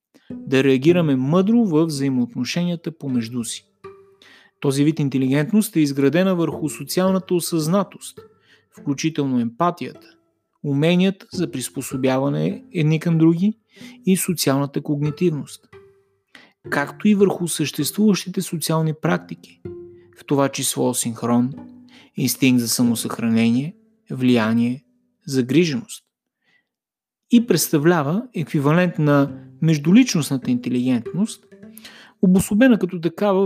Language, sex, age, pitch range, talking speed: Bulgarian, male, 30-49, 140-195 Hz, 90 wpm